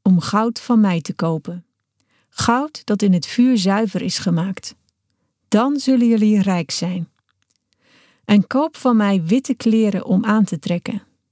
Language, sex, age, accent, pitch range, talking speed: Dutch, female, 40-59, Dutch, 175-235 Hz, 155 wpm